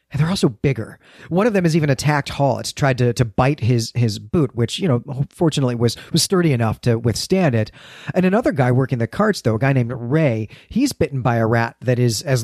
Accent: American